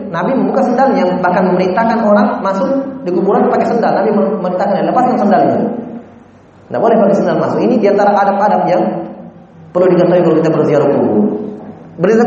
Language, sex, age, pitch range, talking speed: Indonesian, male, 20-39, 140-210 Hz, 160 wpm